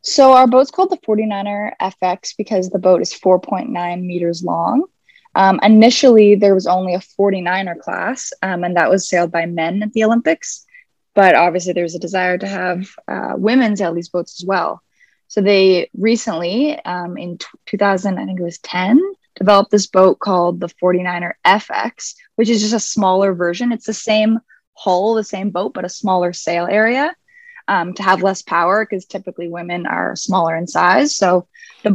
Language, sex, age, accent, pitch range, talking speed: English, female, 20-39, American, 180-220 Hz, 180 wpm